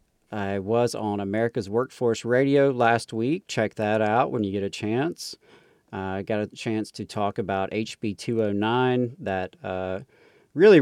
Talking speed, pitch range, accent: 155 wpm, 95-120 Hz, American